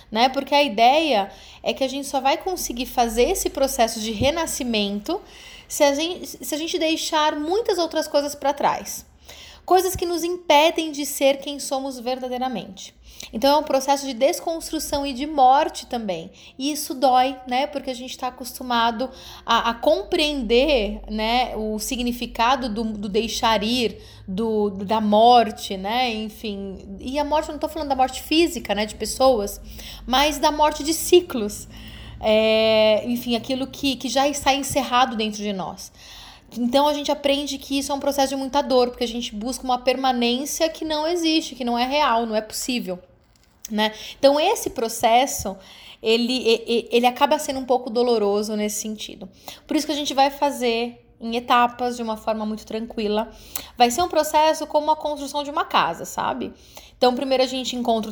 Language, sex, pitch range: Portuguese, female, 225-290 Hz